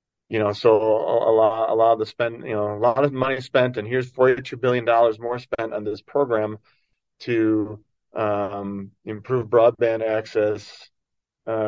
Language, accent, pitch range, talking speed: English, American, 105-120 Hz, 170 wpm